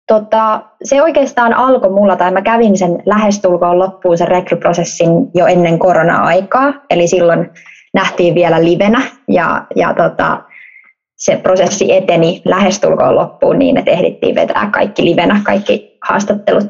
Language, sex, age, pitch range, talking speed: Finnish, female, 20-39, 175-220 Hz, 135 wpm